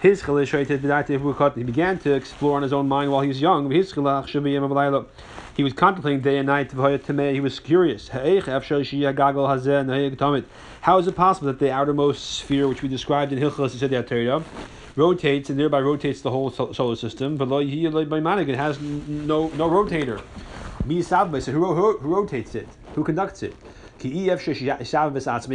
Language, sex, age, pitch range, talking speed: English, male, 30-49, 135-155 Hz, 125 wpm